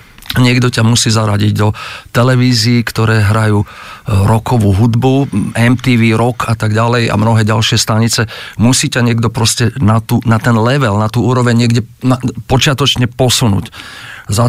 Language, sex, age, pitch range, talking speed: Czech, male, 40-59, 110-130 Hz, 150 wpm